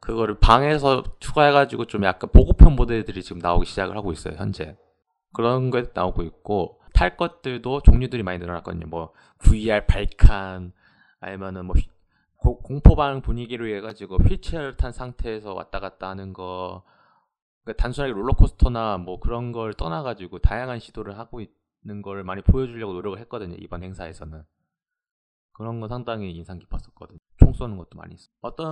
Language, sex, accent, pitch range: Korean, male, native, 90-125 Hz